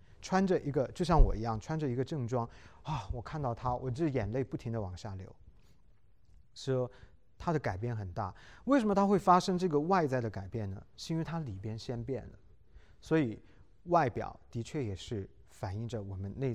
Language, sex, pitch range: Chinese, male, 105-150 Hz